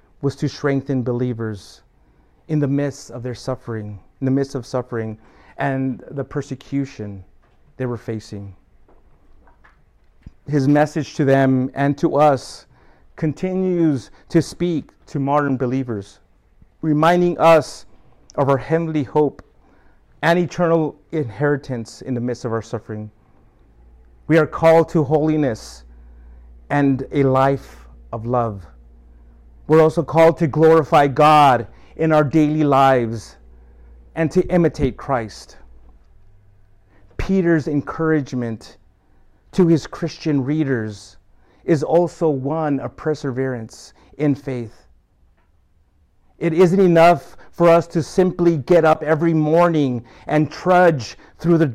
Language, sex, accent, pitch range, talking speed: English, male, American, 105-160 Hz, 115 wpm